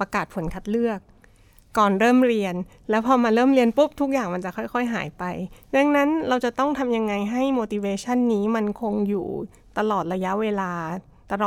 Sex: female